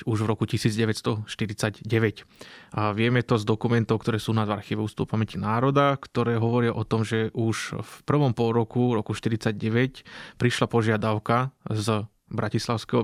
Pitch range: 110-120 Hz